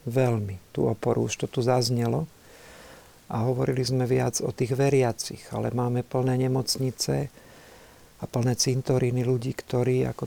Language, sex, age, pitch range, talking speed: Slovak, male, 50-69, 115-135 Hz, 140 wpm